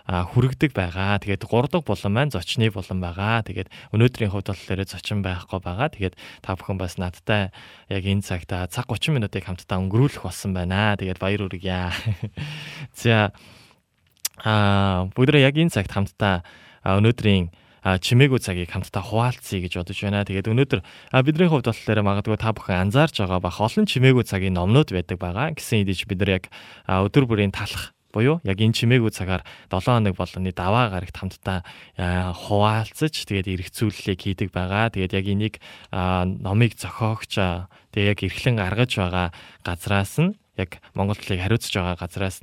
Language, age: Korean, 20-39